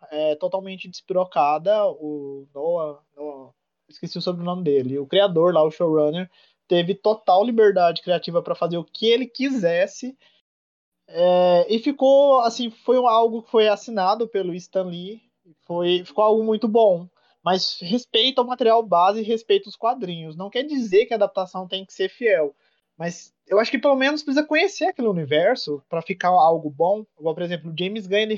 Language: Portuguese